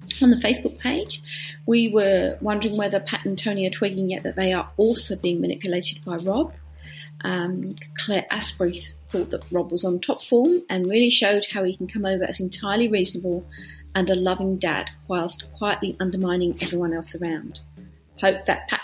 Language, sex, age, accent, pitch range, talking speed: English, female, 40-59, British, 175-205 Hz, 180 wpm